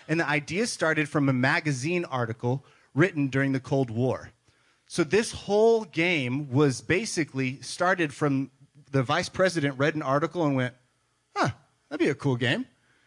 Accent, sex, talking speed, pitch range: American, male, 160 wpm, 125-165 Hz